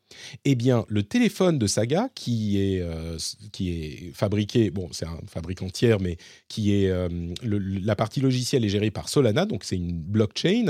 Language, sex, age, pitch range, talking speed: French, male, 40-59, 100-130 Hz, 185 wpm